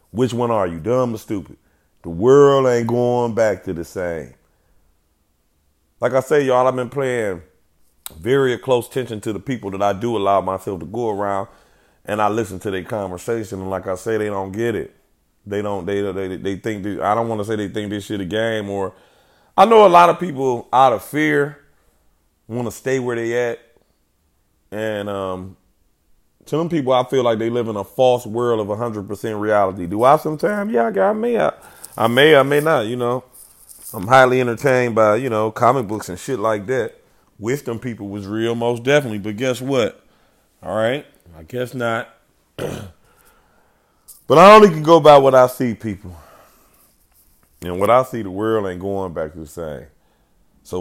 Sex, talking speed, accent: male, 190 wpm, American